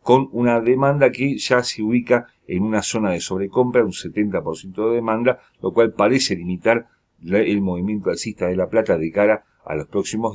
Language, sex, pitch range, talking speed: Spanish, male, 100-125 Hz, 180 wpm